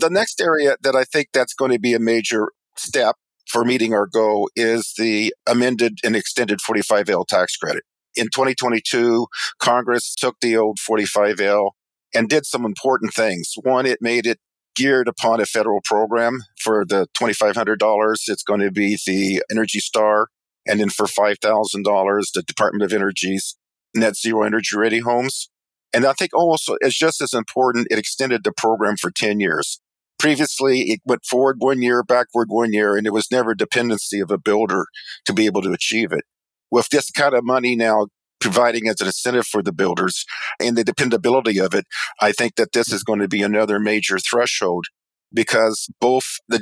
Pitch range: 105-125 Hz